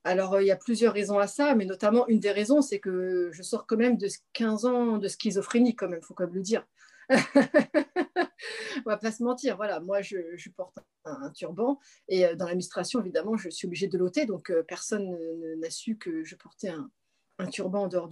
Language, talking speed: French, 220 wpm